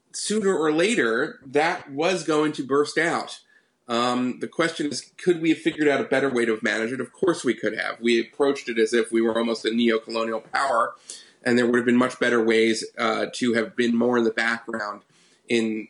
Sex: male